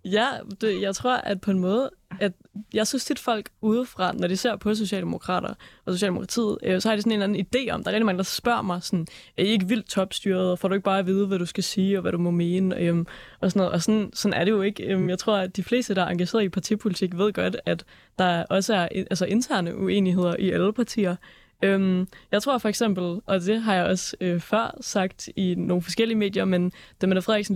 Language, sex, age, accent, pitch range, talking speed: Danish, female, 20-39, native, 180-210 Hz, 250 wpm